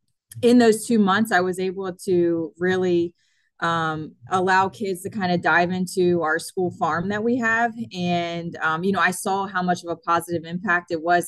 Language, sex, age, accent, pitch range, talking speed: English, female, 20-39, American, 160-185 Hz, 195 wpm